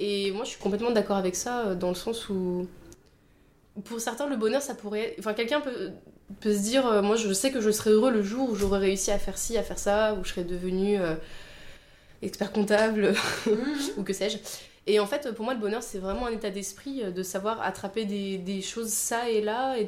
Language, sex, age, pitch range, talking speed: English, female, 20-39, 190-225 Hz, 225 wpm